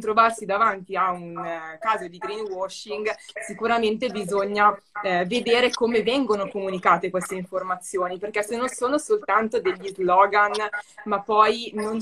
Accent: native